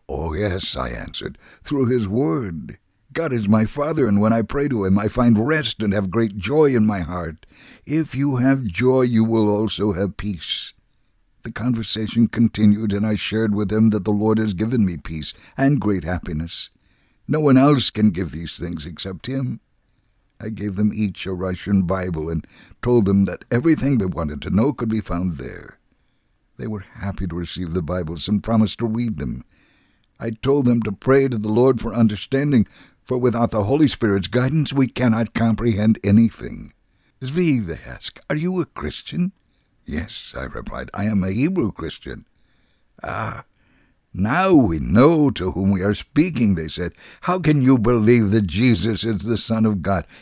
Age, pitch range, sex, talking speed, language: 60-79, 95-130 Hz, male, 180 wpm, English